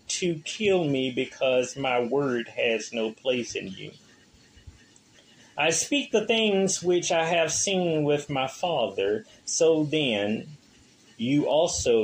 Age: 30-49